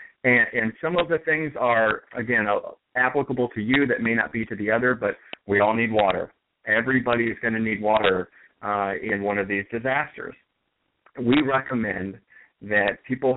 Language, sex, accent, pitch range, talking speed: English, male, American, 105-125 Hz, 180 wpm